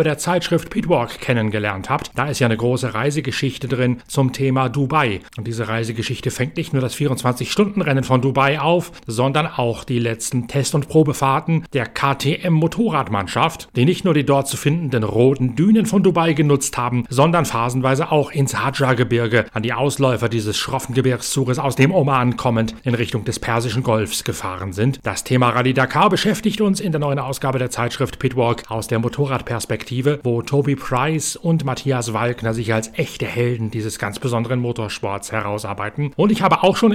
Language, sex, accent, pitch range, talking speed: German, male, German, 120-155 Hz, 170 wpm